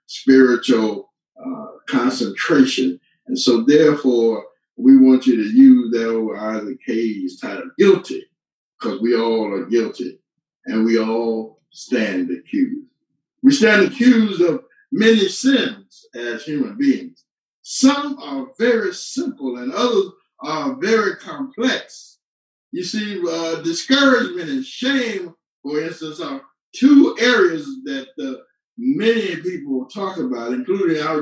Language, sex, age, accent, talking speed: English, male, 50-69, American, 125 wpm